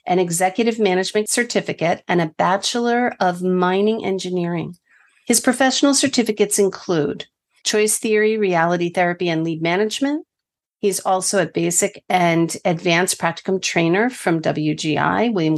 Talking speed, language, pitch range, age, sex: 125 wpm, English, 180-225 Hz, 50-69, female